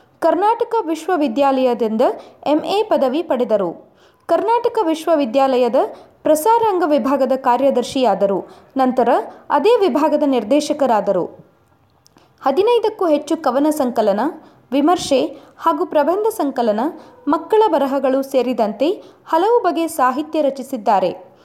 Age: 20-39